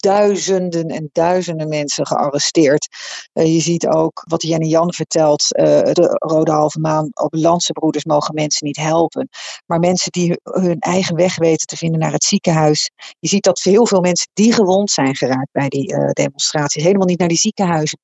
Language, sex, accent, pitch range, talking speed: Dutch, female, Dutch, 155-185 Hz, 185 wpm